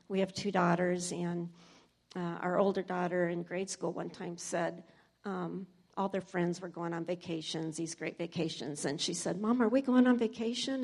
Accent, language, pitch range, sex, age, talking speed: American, English, 175-220 Hz, female, 50-69, 195 wpm